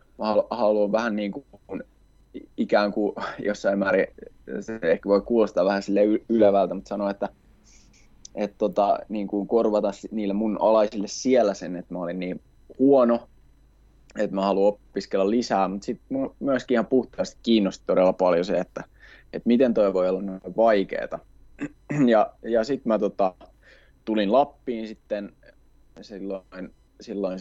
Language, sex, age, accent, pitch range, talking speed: Finnish, male, 20-39, native, 100-115 Hz, 145 wpm